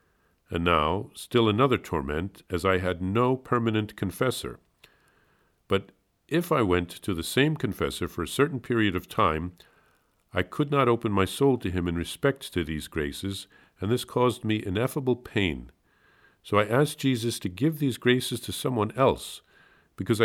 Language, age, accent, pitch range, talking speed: English, 50-69, American, 85-125 Hz, 165 wpm